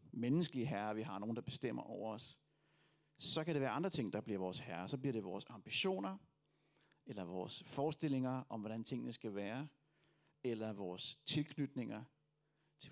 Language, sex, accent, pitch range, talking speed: Danish, male, native, 120-155 Hz, 165 wpm